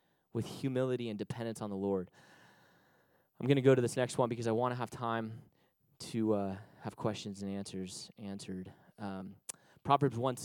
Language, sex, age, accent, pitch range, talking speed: English, male, 20-39, American, 110-140 Hz, 170 wpm